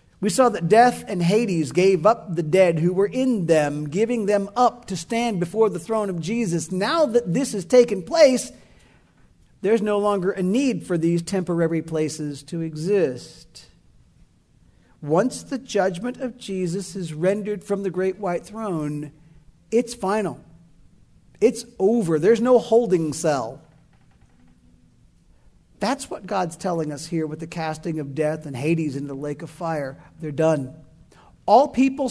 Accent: American